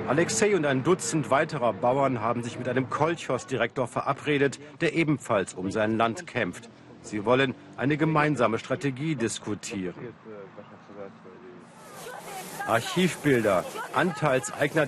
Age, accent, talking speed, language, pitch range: 50-69, German, 105 wpm, German, 125-165 Hz